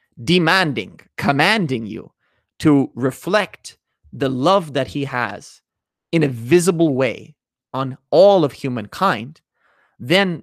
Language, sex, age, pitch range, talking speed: English, male, 30-49, 125-160 Hz, 110 wpm